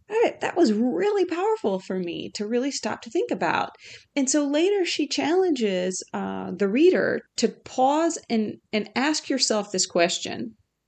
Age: 40-59